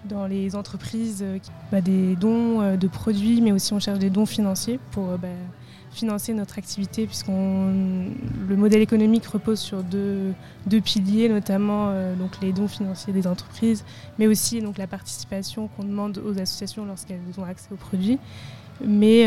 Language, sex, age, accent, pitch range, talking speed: French, female, 20-39, French, 190-215 Hz, 170 wpm